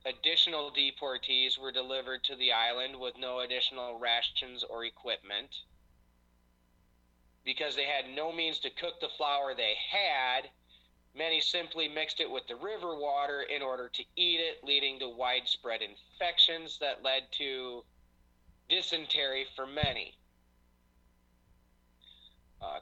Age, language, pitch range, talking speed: 30-49, English, 100-155 Hz, 125 wpm